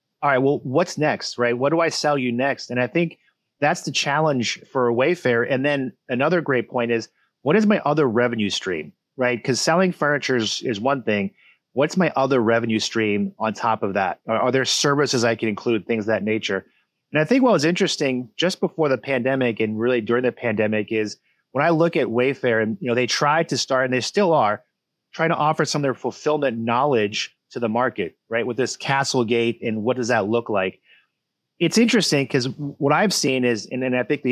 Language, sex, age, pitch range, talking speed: English, male, 30-49, 120-150 Hz, 220 wpm